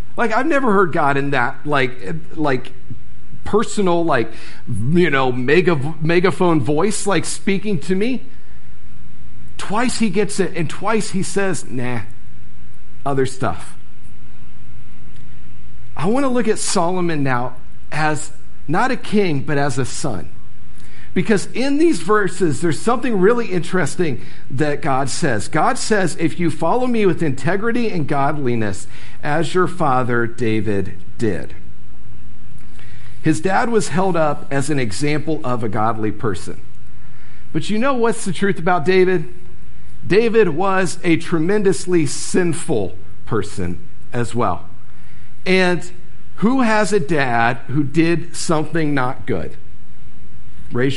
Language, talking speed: English, 130 wpm